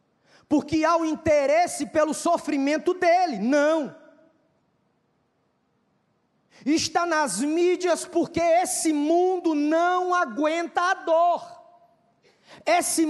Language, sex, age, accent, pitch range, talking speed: Spanish, male, 20-39, Brazilian, 215-330 Hz, 85 wpm